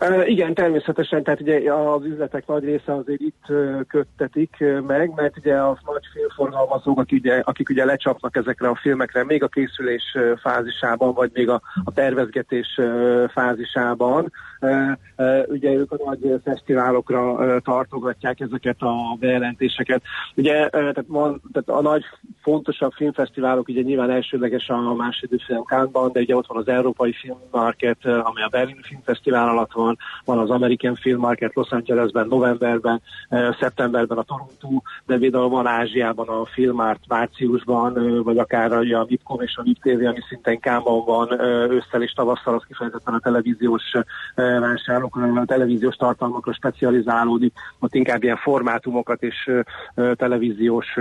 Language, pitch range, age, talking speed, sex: Hungarian, 120-135 Hz, 30-49, 140 wpm, male